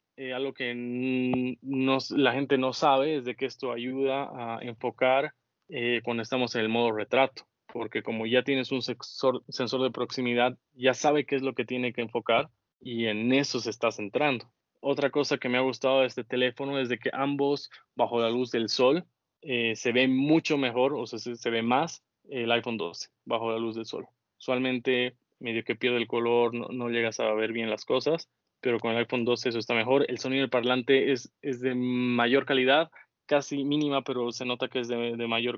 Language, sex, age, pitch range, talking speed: Spanish, male, 20-39, 120-135 Hz, 210 wpm